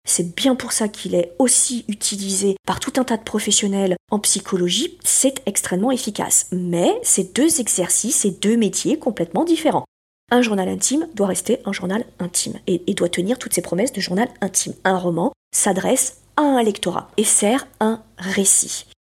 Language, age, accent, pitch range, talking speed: French, 40-59, French, 190-250 Hz, 175 wpm